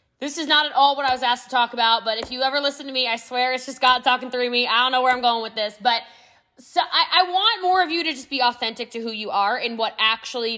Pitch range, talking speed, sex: 225-290 Hz, 305 wpm, female